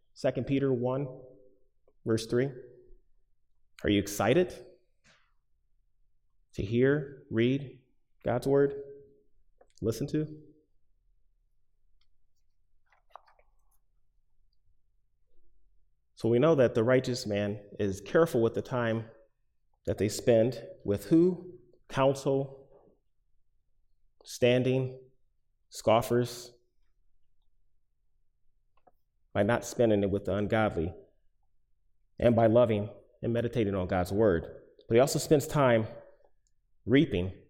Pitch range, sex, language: 100-135 Hz, male, English